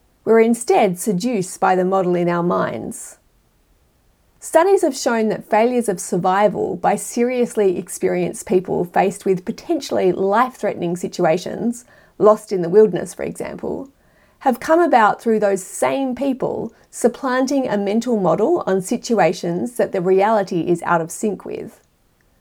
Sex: female